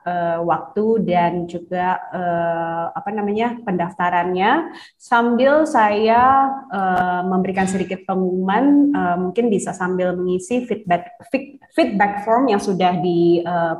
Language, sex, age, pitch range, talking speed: Indonesian, female, 20-39, 180-225 Hz, 115 wpm